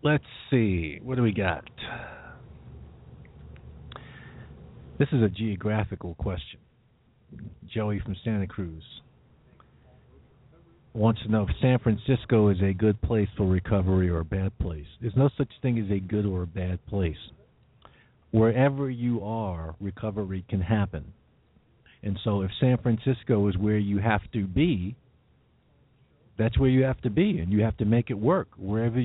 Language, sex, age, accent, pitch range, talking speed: English, male, 50-69, American, 95-125 Hz, 150 wpm